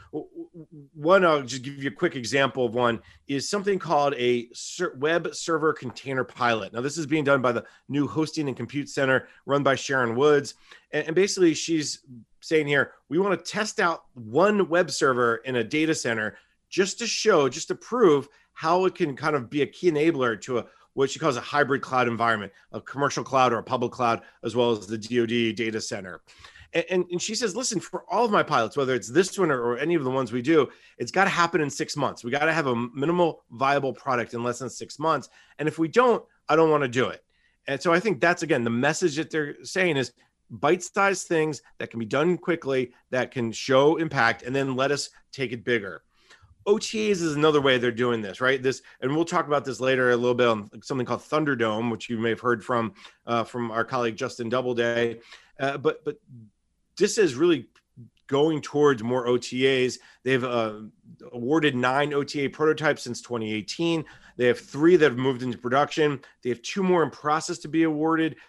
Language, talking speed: English, 210 wpm